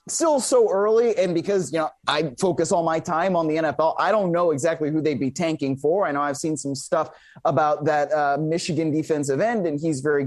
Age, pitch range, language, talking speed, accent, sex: 20-39, 160-205 Hz, English, 230 wpm, American, male